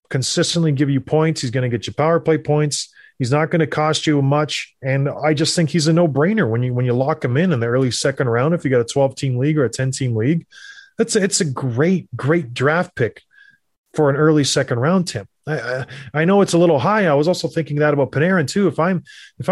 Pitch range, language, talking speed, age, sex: 130-165 Hz, English, 260 wpm, 30-49, male